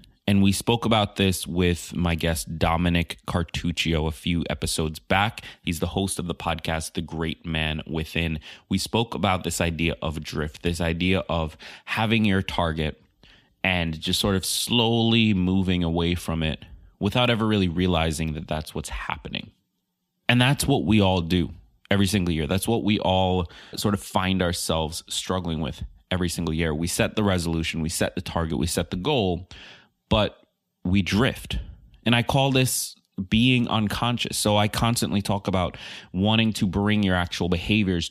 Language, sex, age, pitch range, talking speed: English, male, 20-39, 85-105 Hz, 170 wpm